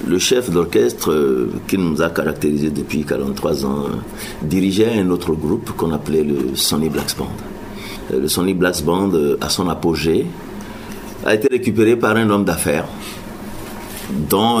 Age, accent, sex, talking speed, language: 50-69, French, male, 160 wpm, French